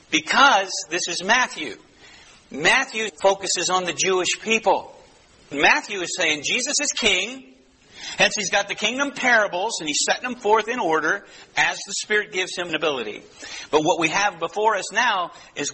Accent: American